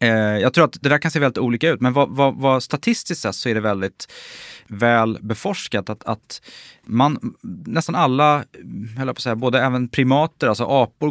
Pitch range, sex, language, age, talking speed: 110-140 Hz, male, Swedish, 20-39, 190 wpm